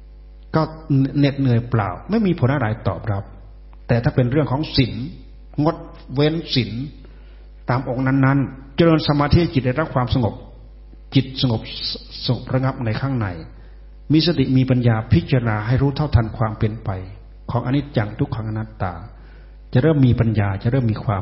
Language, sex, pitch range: Thai, male, 110-140 Hz